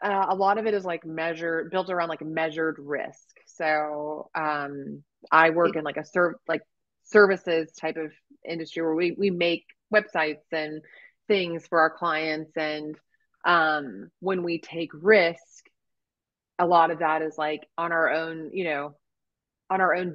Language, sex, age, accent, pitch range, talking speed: English, female, 30-49, American, 155-190 Hz, 165 wpm